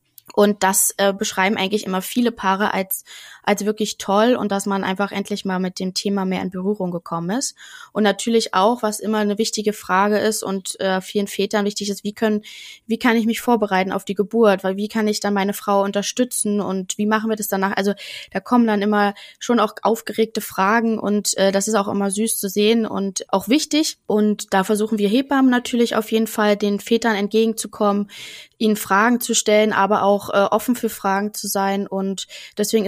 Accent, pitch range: German, 195-225 Hz